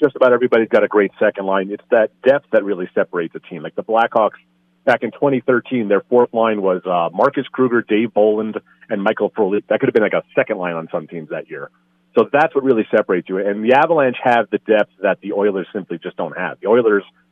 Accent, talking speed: American, 235 wpm